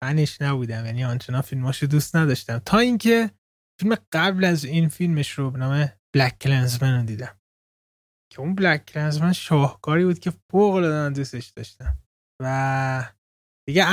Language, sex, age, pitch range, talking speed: Persian, male, 20-39, 120-155 Hz, 145 wpm